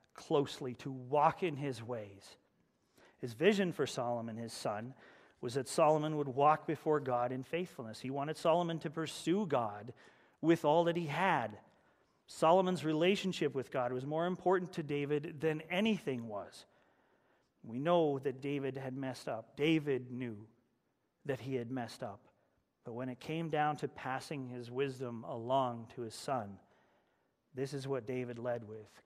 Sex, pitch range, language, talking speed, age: male, 120-155 Hz, English, 160 wpm, 40-59